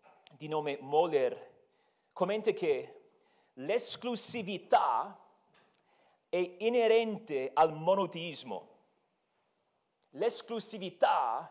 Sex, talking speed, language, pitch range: male, 55 wpm, Italian, 190-295 Hz